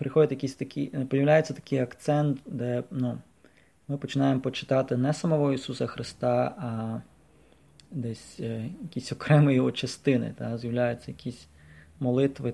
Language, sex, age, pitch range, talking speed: English, male, 20-39, 120-135 Hz, 110 wpm